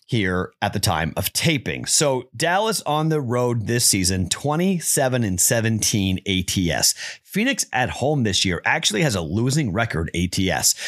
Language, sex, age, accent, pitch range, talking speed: English, male, 30-49, American, 100-145 Hz, 155 wpm